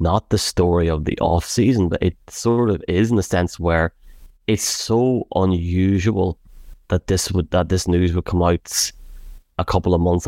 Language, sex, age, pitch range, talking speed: English, male, 20-39, 85-95 Hz, 185 wpm